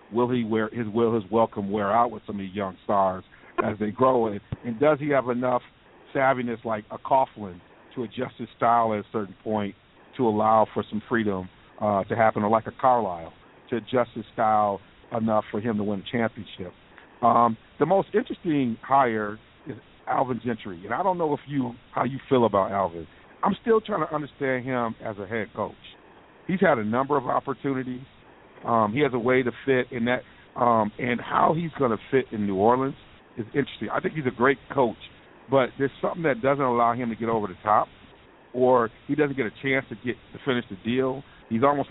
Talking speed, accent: 210 wpm, American